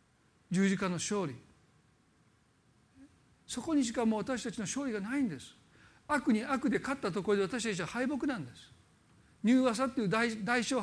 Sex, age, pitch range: male, 50-69, 175-245 Hz